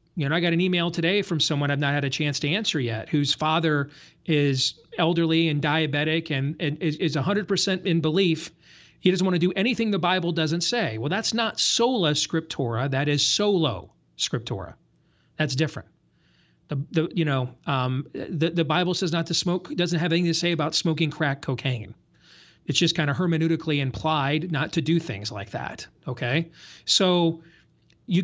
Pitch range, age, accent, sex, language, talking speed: 150-180 Hz, 40-59, American, male, English, 185 wpm